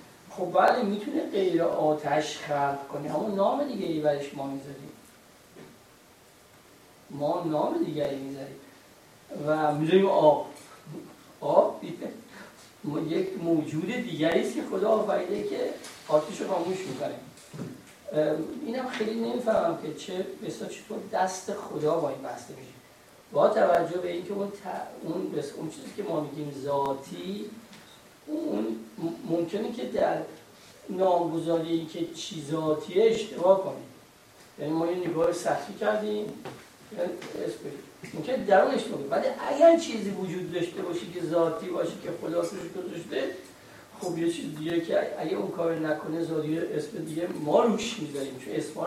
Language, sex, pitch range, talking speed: Persian, male, 150-195 Hz, 135 wpm